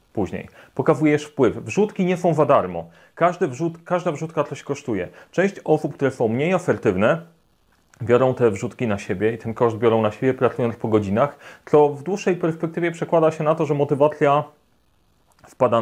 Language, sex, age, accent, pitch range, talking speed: Polish, male, 30-49, native, 120-155 Hz, 170 wpm